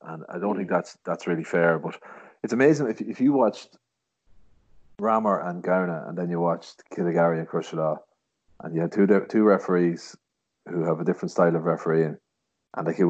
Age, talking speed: 30-49, 190 wpm